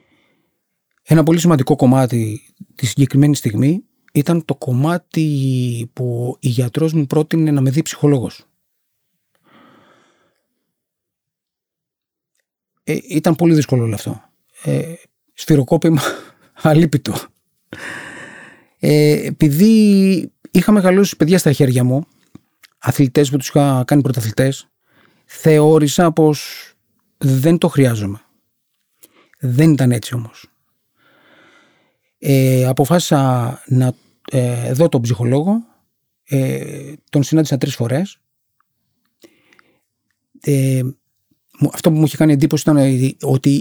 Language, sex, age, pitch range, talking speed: Greek, male, 40-59, 130-160 Hz, 100 wpm